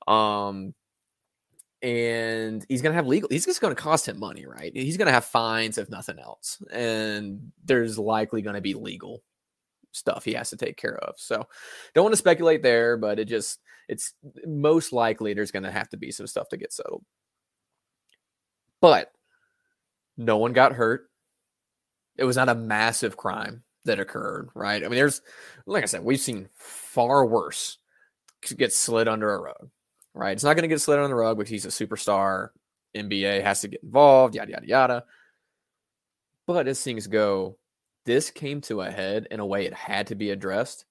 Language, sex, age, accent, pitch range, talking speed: English, male, 20-39, American, 105-145 Hz, 190 wpm